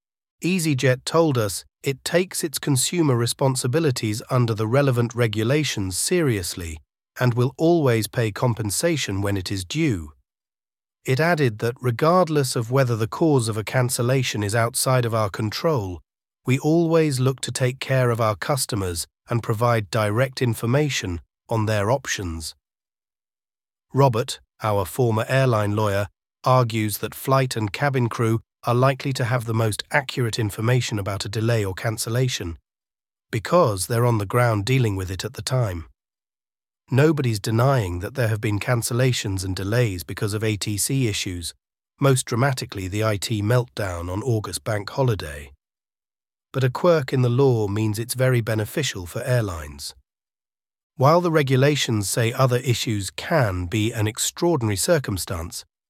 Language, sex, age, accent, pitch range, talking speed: English, male, 30-49, British, 100-130 Hz, 145 wpm